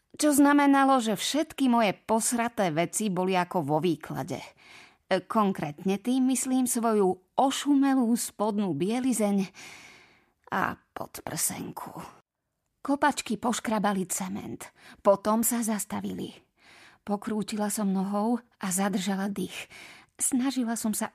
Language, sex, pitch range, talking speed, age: Slovak, female, 195-240 Hz, 100 wpm, 30-49